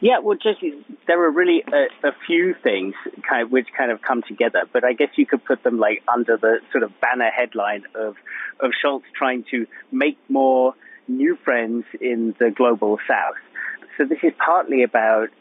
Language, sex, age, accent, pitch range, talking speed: English, male, 30-49, British, 115-155 Hz, 190 wpm